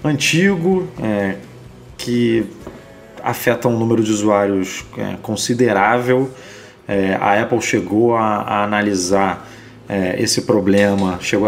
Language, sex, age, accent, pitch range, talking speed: Portuguese, male, 30-49, Brazilian, 95-120 Hz, 90 wpm